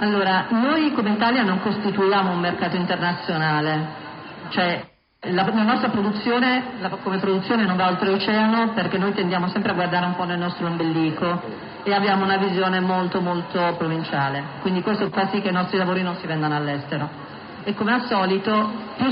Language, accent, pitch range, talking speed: Italian, native, 175-205 Hz, 175 wpm